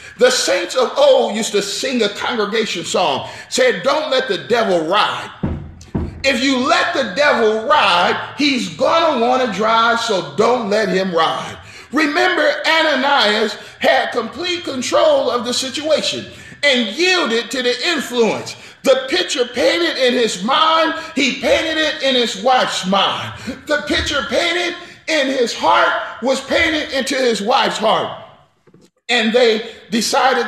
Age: 40-59